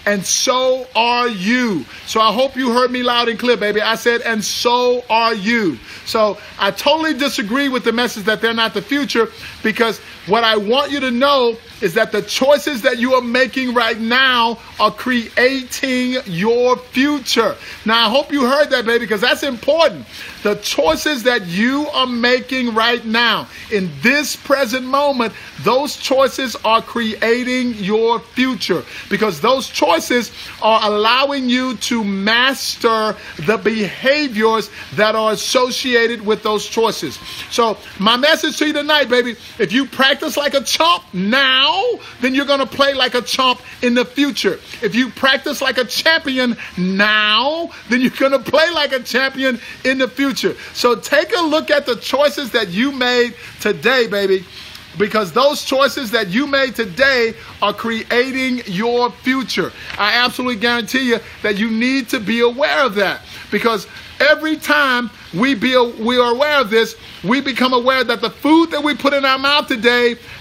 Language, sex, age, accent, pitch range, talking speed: English, male, 50-69, American, 225-270 Hz, 170 wpm